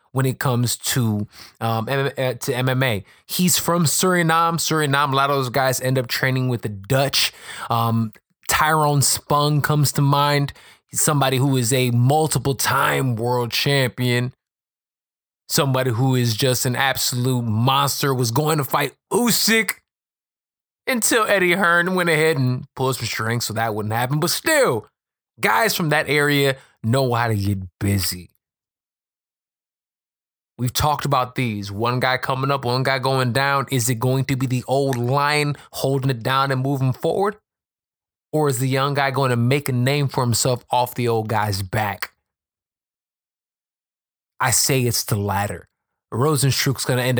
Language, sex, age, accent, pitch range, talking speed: English, male, 20-39, American, 120-145 Hz, 160 wpm